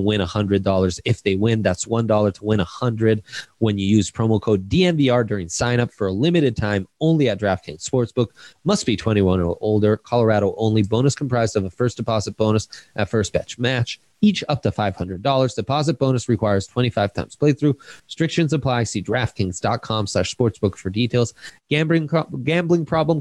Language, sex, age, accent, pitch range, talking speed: English, male, 20-39, American, 100-135 Hz, 165 wpm